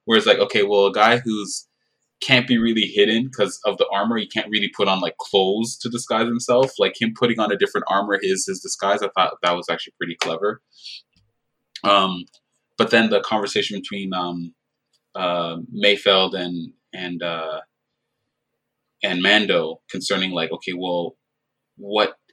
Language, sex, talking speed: English, male, 165 wpm